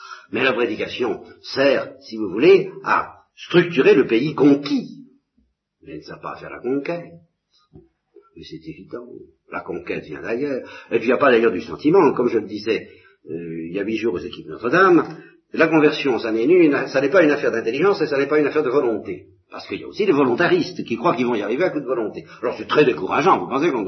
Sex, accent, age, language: male, French, 50-69, French